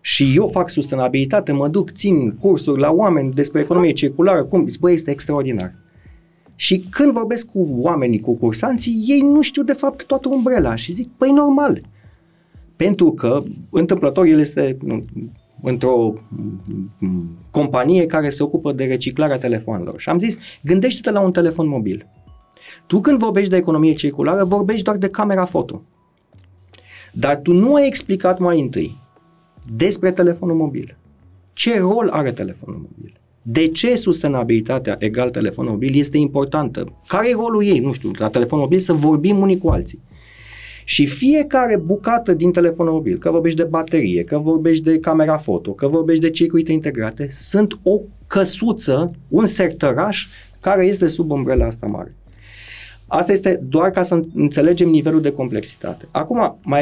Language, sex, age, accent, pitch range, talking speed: Romanian, male, 30-49, native, 130-190 Hz, 155 wpm